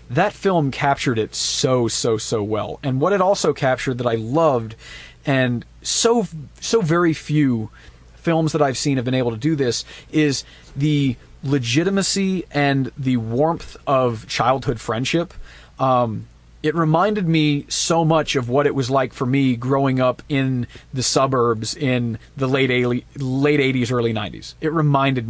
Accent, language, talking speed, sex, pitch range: American, English, 160 wpm, male, 125-160 Hz